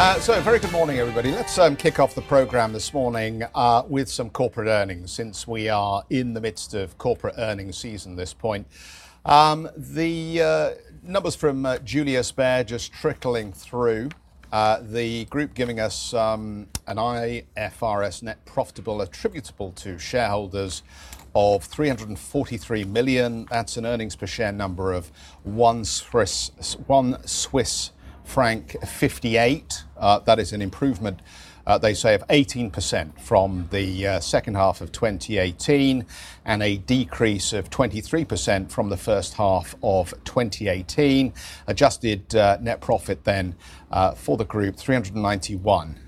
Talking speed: 140 wpm